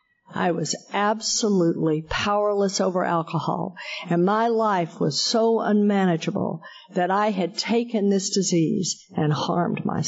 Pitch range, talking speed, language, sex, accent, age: 175-215 Hz, 125 wpm, English, female, American, 50-69